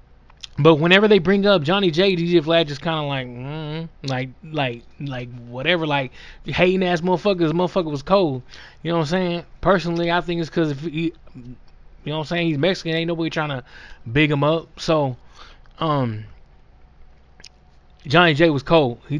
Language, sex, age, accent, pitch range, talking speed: English, male, 20-39, American, 135-160 Hz, 190 wpm